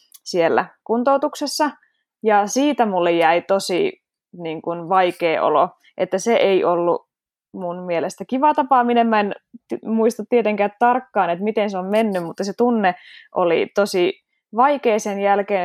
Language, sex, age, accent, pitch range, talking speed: Finnish, female, 20-39, native, 180-215 Hz, 145 wpm